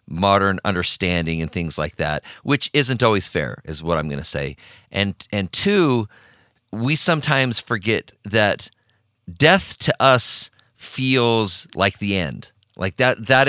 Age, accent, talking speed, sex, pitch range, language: 40-59, American, 145 wpm, male, 95-120 Hz, English